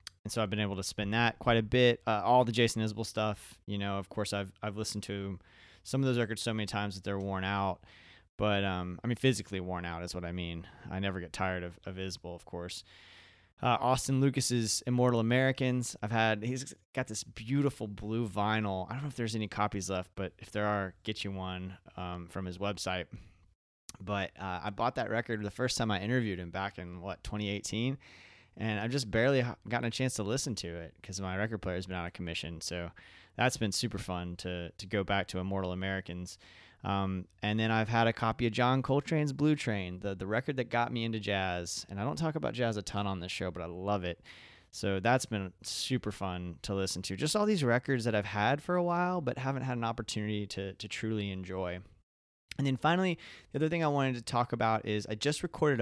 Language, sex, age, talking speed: English, male, 20-39, 230 wpm